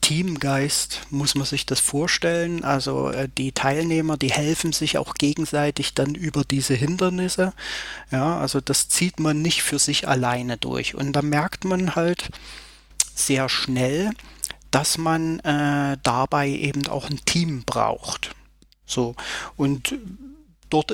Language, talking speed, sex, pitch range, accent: German, 135 wpm, male, 135-160 Hz, German